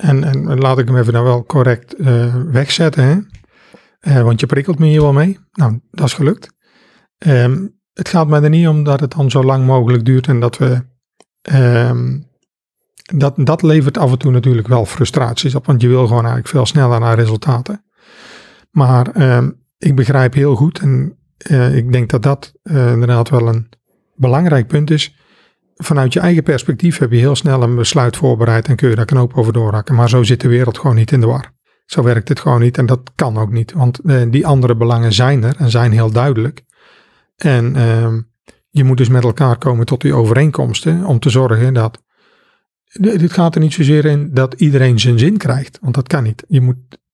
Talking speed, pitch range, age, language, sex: 205 wpm, 120-150 Hz, 50-69, Dutch, male